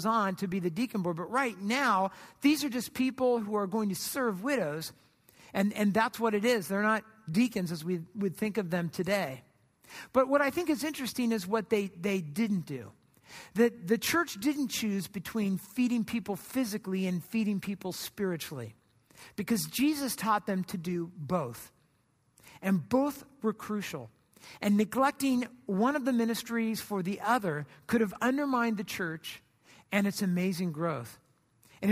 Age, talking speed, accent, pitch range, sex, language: 50-69, 170 wpm, American, 180-235 Hz, male, English